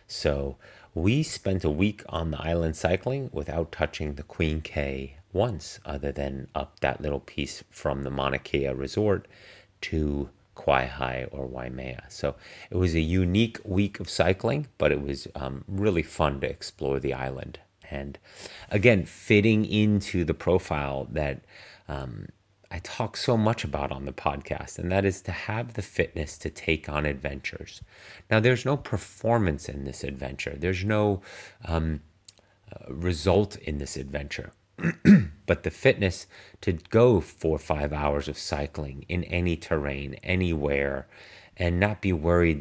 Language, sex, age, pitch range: English, male, 30-49, 70-100 Hz